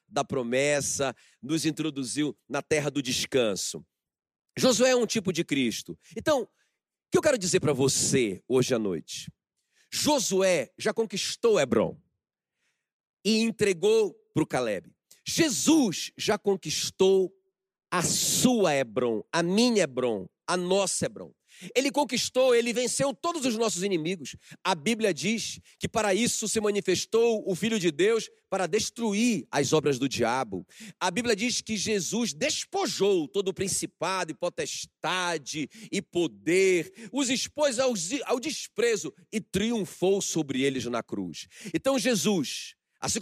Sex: male